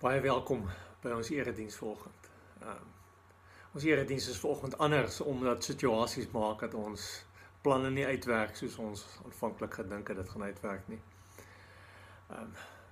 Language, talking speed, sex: English, 135 wpm, male